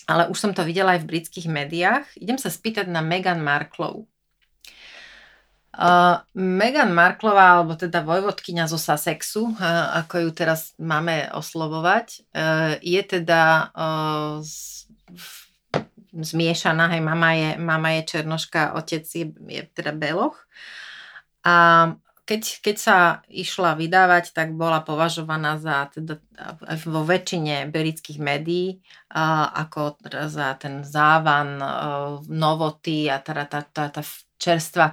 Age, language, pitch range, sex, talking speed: 30-49, Slovak, 155-180 Hz, female, 120 wpm